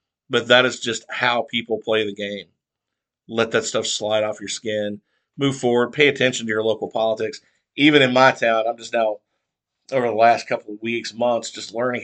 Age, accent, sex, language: 50-69, American, male, English